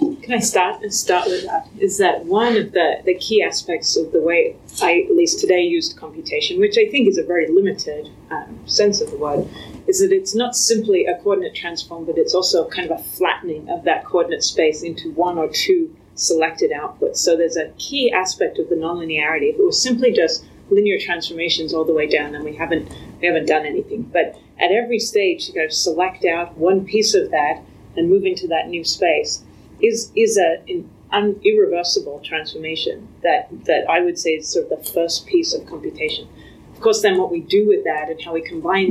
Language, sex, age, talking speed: English, female, 30-49, 215 wpm